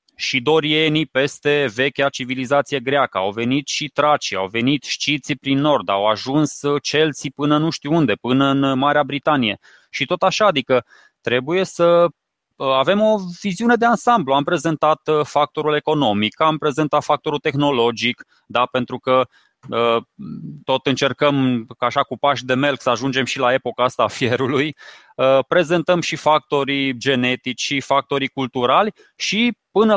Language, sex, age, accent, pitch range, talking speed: Romanian, male, 20-39, native, 130-175 Hz, 145 wpm